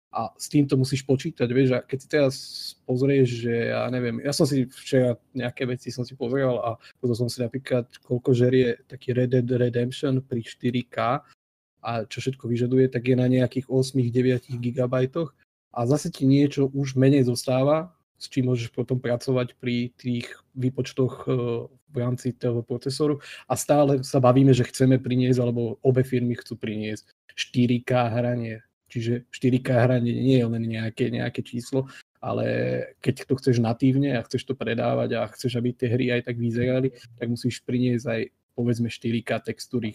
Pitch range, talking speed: 120-130 Hz, 170 wpm